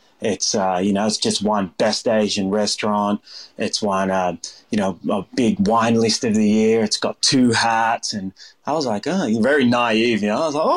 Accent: Australian